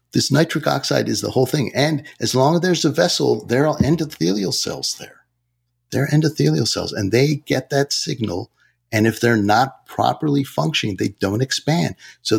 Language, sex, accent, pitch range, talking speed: English, male, American, 115-145 Hz, 185 wpm